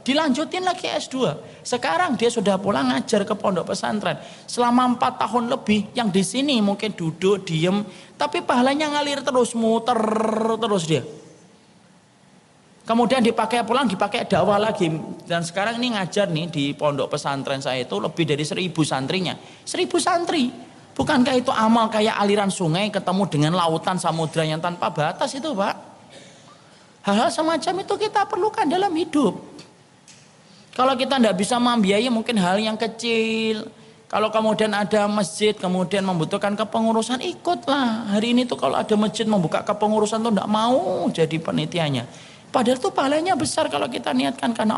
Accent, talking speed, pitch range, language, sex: native, 145 wpm, 185-240 Hz, Indonesian, male